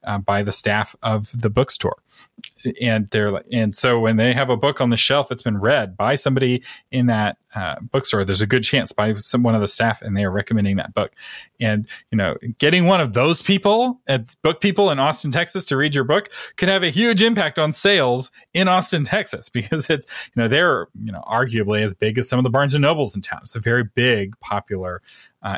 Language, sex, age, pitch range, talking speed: English, male, 30-49, 105-160 Hz, 230 wpm